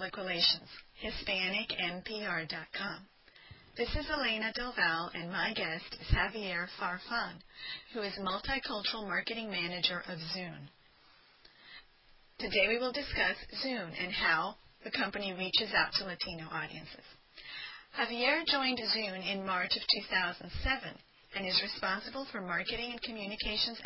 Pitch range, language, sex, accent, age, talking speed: 185-235 Hz, English, female, American, 40-59, 120 wpm